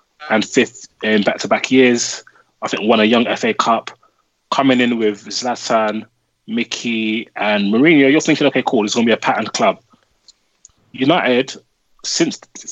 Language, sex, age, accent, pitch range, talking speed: English, male, 20-39, British, 105-145 Hz, 155 wpm